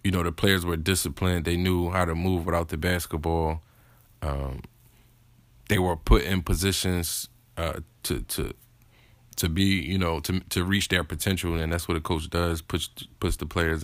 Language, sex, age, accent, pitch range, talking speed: English, male, 20-39, American, 85-110 Hz, 180 wpm